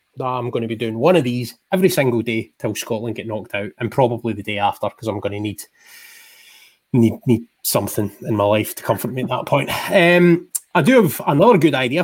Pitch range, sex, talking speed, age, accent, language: 110-140 Hz, male, 225 wpm, 20-39, British, English